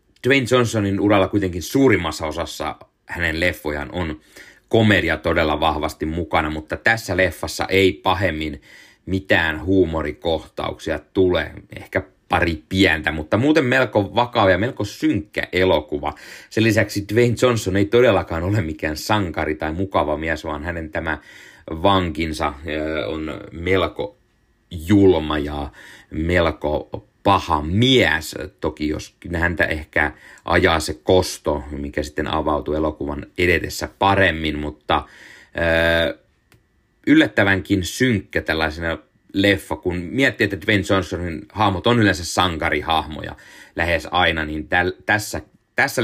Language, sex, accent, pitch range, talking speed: Finnish, male, native, 80-105 Hz, 115 wpm